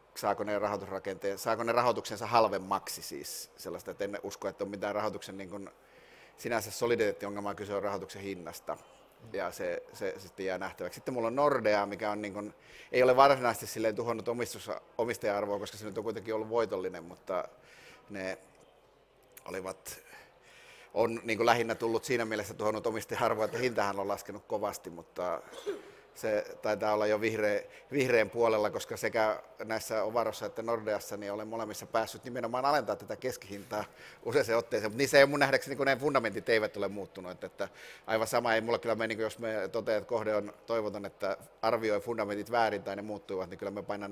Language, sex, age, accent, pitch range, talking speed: Finnish, male, 30-49, native, 100-115 Hz, 170 wpm